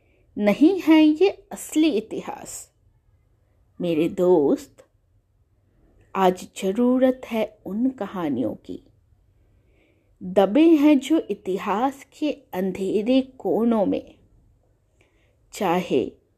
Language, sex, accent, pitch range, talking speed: Hindi, female, native, 180-290 Hz, 80 wpm